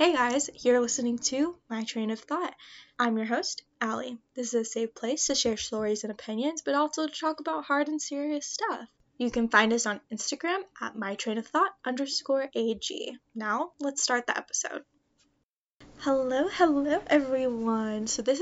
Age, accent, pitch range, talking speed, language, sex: 10-29, American, 220-285 Hz, 170 wpm, English, female